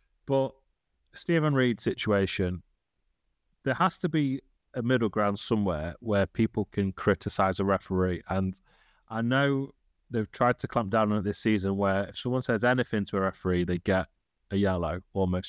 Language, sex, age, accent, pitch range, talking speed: English, male, 30-49, British, 95-120 Hz, 165 wpm